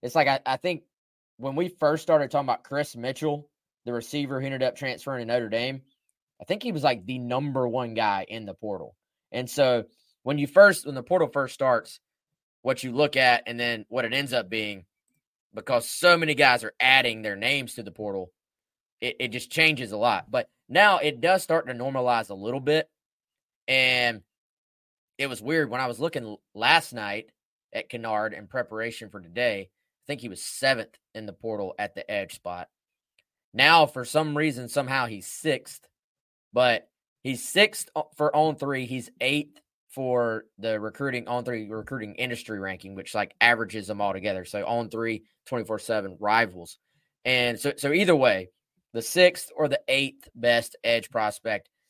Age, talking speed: 20-39, 185 wpm